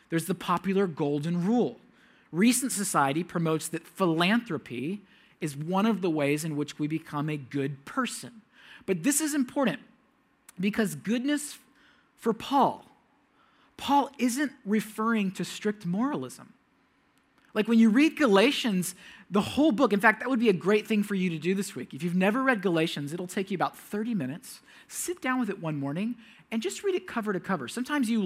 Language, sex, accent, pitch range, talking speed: English, male, American, 175-250 Hz, 180 wpm